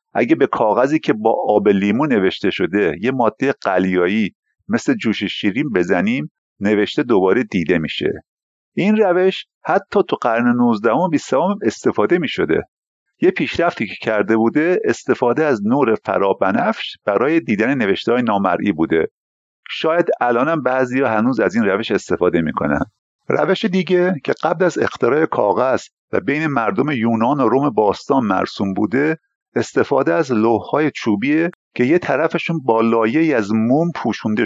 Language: Persian